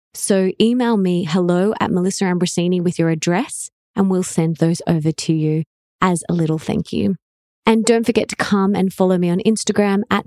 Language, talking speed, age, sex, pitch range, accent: English, 195 wpm, 20-39, female, 175-215 Hz, Australian